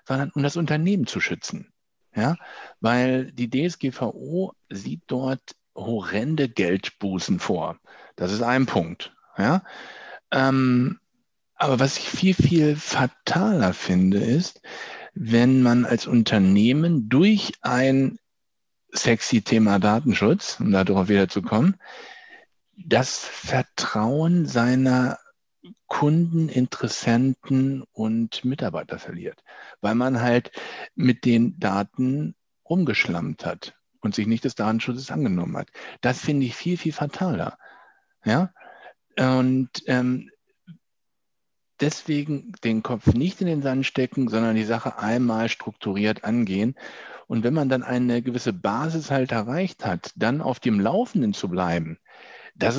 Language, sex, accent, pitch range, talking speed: German, male, German, 115-150 Hz, 120 wpm